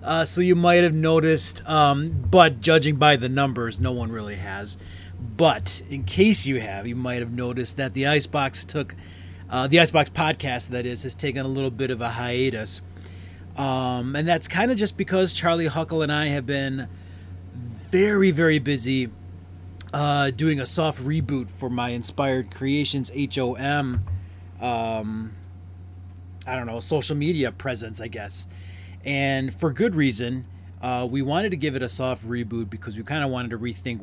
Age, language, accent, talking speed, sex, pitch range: 30-49, English, American, 175 wpm, male, 95-145 Hz